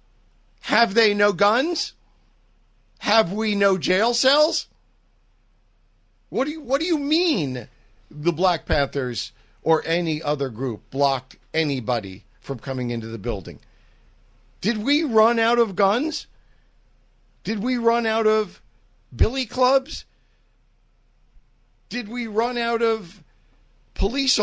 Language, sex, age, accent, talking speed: English, male, 50-69, American, 120 wpm